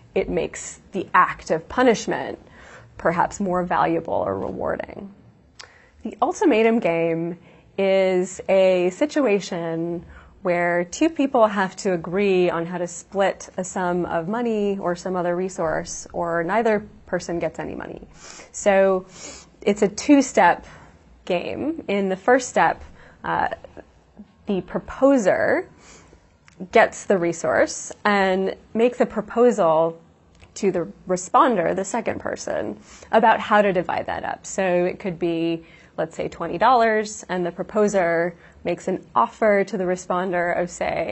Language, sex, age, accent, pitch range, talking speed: English, female, 20-39, American, 175-210 Hz, 130 wpm